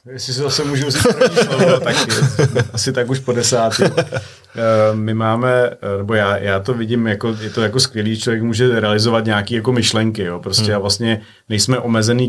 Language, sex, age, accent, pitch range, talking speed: Czech, male, 30-49, native, 105-125 Hz, 165 wpm